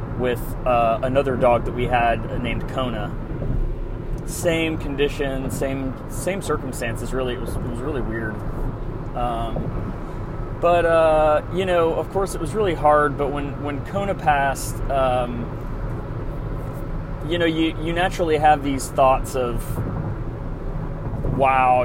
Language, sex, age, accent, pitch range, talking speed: English, male, 30-49, American, 120-145 Hz, 130 wpm